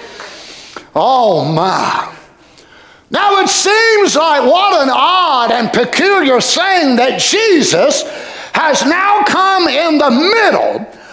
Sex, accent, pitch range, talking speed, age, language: male, American, 245-330 Hz, 110 wpm, 50-69, English